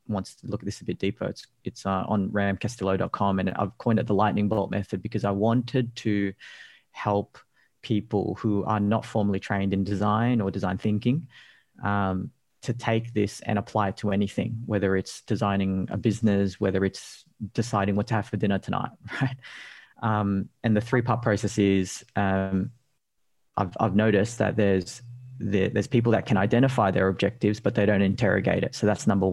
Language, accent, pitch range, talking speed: English, Australian, 100-115 Hz, 180 wpm